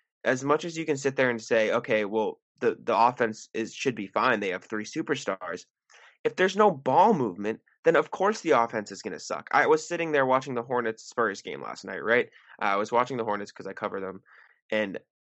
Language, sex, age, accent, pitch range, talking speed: English, male, 20-39, American, 115-155 Hz, 230 wpm